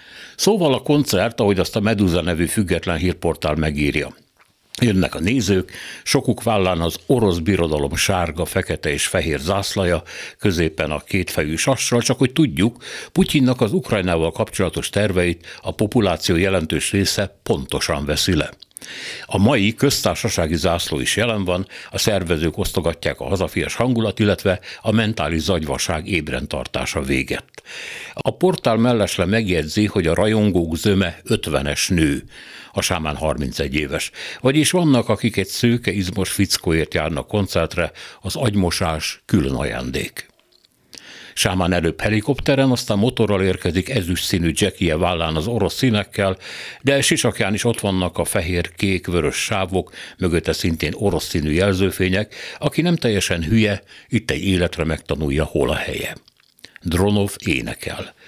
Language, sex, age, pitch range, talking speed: Hungarian, male, 60-79, 85-110 Hz, 135 wpm